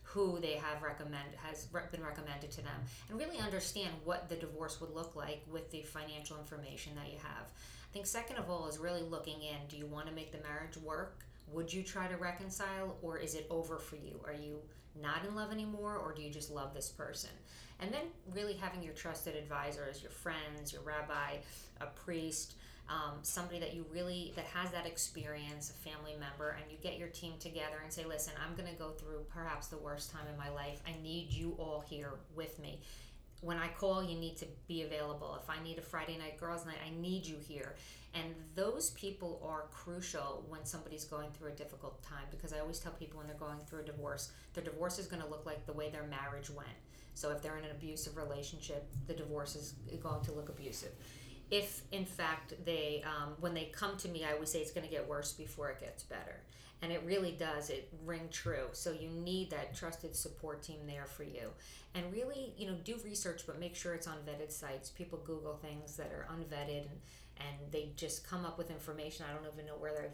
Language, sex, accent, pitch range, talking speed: English, female, American, 150-170 Hz, 220 wpm